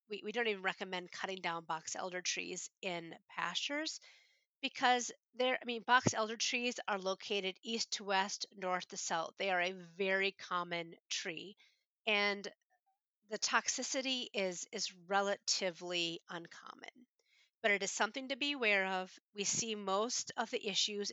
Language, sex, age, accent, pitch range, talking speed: English, female, 40-59, American, 185-230 Hz, 155 wpm